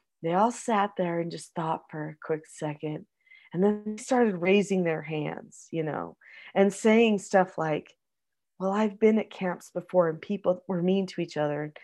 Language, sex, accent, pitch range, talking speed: English, female, American, 180-235 Hz, 190 wpm